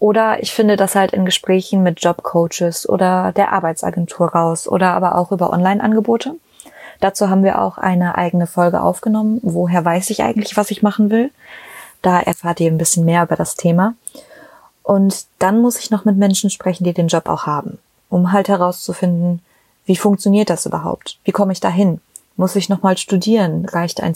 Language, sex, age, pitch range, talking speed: German, female, 20-39, 180-205 Hz, 180 wpm